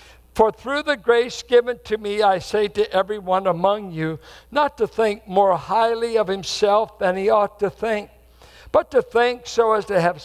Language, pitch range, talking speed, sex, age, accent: English, 175-230 Hz, 185 wpm, male, 60-79, American